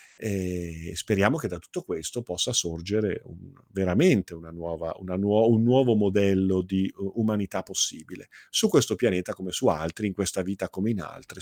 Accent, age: native, 40-59